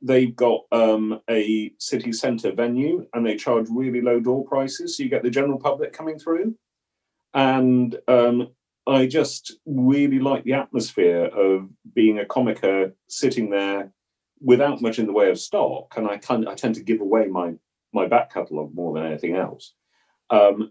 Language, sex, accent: English, male, British